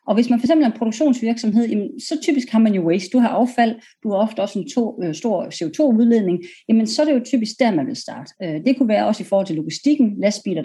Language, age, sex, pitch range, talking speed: Danish, 40-59, female, 190-250 Hz, 230 wpm